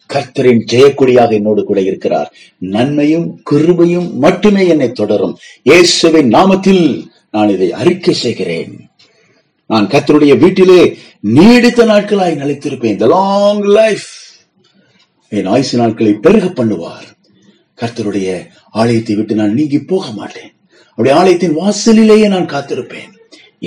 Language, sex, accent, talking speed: Tamil, male, native, 90 wpm